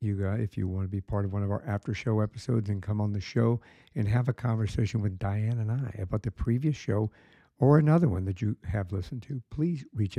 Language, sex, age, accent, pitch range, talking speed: English, male, 60-79, American, 105-125 Hz, 255 wpm